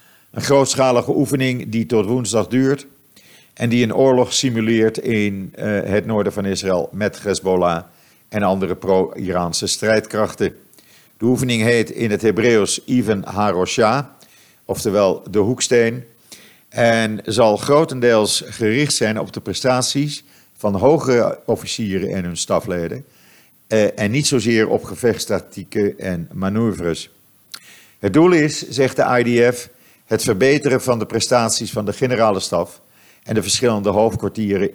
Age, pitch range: 50-69, 100-125 Hz